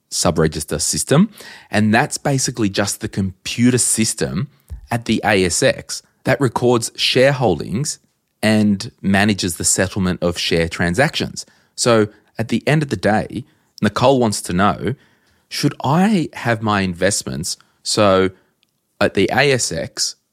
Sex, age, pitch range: male, 30-49, 80-110 Hz